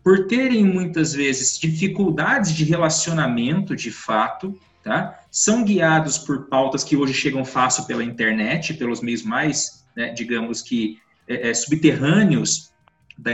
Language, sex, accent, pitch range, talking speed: Portuguese, male, Brazilian, 125-180 Hz, 120 wpm